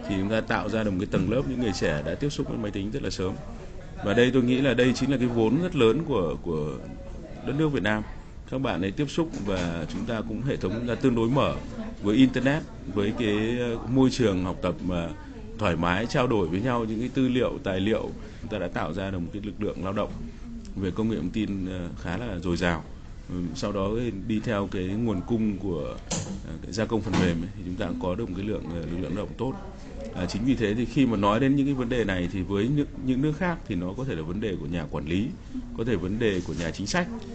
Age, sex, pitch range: 20-39, male, 90-120 Hz